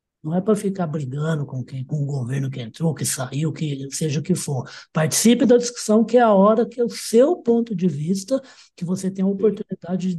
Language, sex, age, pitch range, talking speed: Portuguese, male, 60-79, 165-220 Hz, 230 wpm